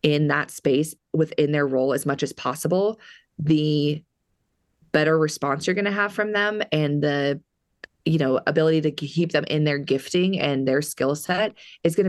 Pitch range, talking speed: 140-160 Hz, 175 wpm